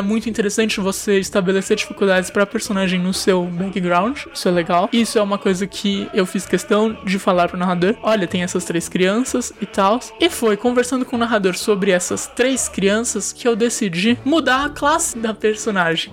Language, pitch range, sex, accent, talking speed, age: Portuguese, 200-240 Hz, male, Brazilian, 185 wpm, 20-39